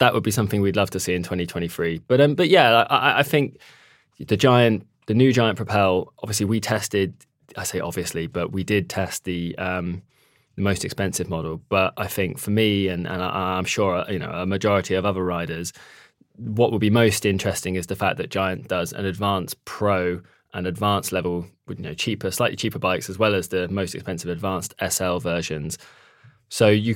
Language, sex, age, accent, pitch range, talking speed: English, male, 20-39, British, 90-115 Hz, 200 wpm